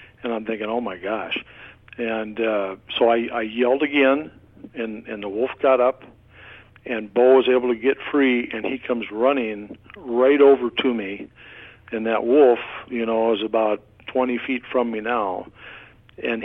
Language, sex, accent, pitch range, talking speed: English, male, American, 110-125 Hz, 170 wpm